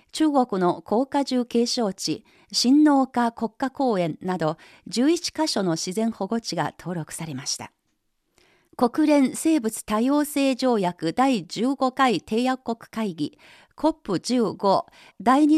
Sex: female